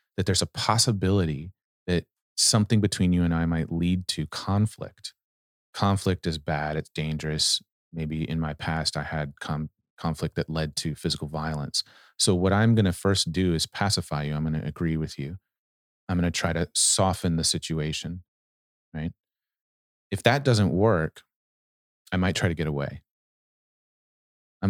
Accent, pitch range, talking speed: American, 75-95 Hz, 165 wpm